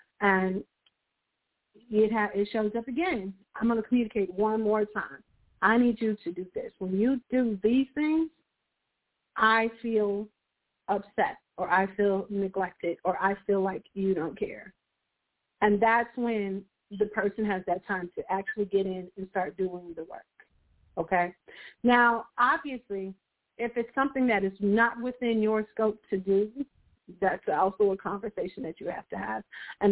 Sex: female